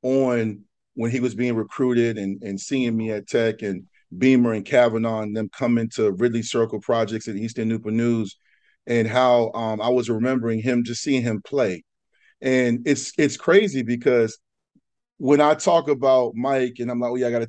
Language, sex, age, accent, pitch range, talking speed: English, male, 40-59, American, 115-150 Hz, 190 wpm